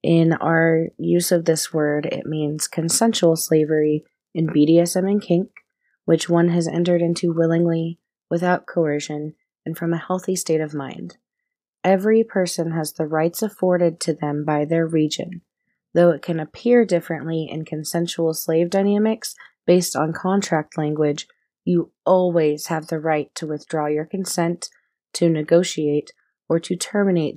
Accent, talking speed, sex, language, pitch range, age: American, 145 wpm, female, English, 155-180 Hz, 20-39